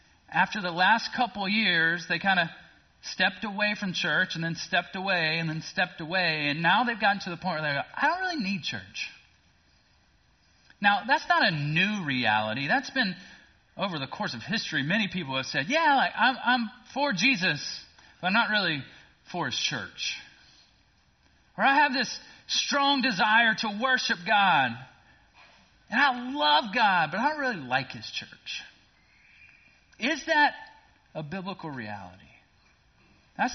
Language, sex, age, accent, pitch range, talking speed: English, male, 30-49, American, 140-210 Hz, 160 wpm